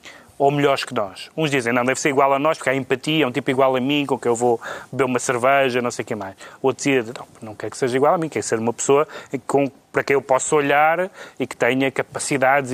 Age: 30-49